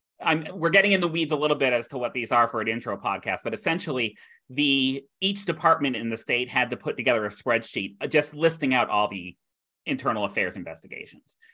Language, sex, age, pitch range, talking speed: English, male, 30-49, 120-160 Hz, 210 wpm